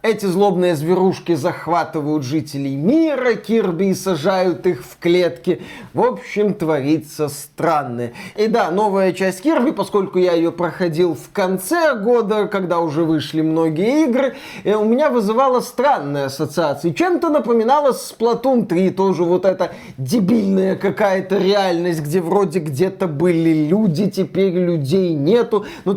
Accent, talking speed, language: native, 135 wpm, Russian